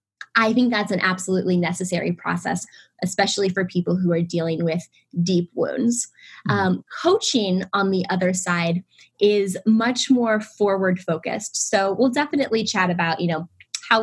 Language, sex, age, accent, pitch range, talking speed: English, female, 20-39, American, 180-225 Hz, 150 wpm